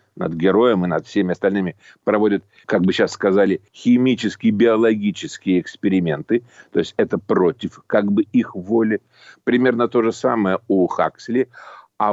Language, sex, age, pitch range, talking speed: Russian, male, 50-69, 105-130 Hz, 145 wpm